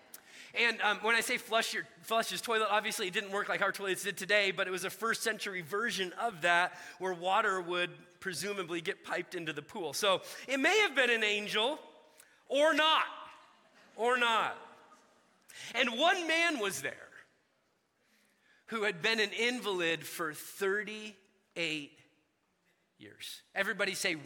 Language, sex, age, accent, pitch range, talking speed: English, male, 30-49, American, 170-220 Hz, 155 wpm